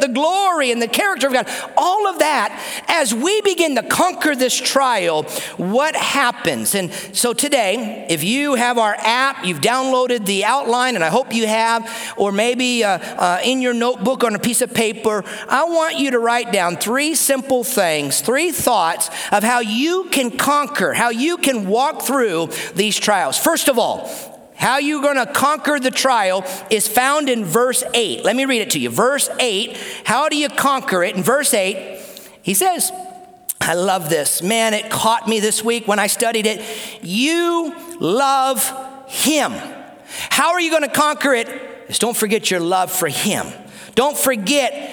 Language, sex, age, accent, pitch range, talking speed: English, male, 50-69, American, 225-295 Hz, 180 wpm